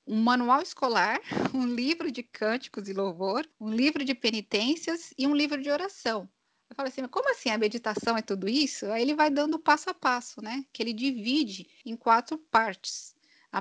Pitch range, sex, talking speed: 215-285 Hz, female, 195 wpm